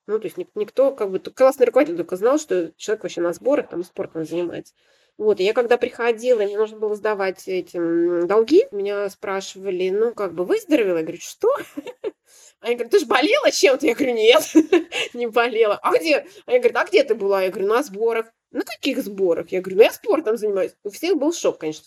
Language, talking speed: Russian, 205 wpm